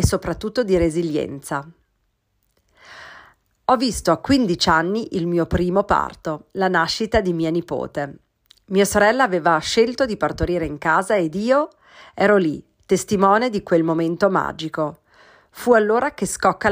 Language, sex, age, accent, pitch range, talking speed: Italian, female, 40-59, native, 160-215 Hz, 140 wpm